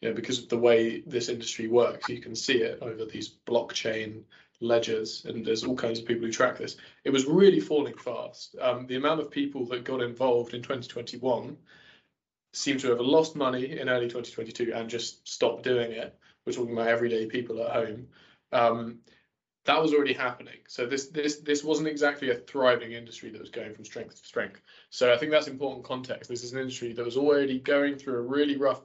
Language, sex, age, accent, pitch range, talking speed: English, male, 20-39, British, 115-130 Hz, 205 wpm